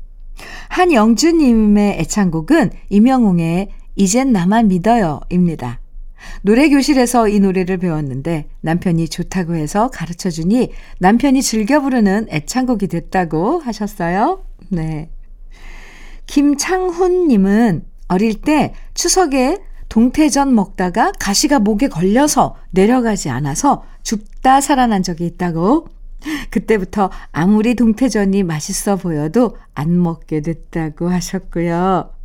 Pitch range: 180-255 Hz